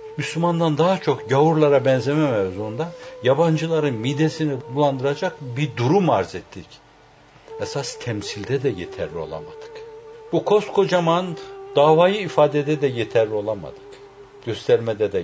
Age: 60-79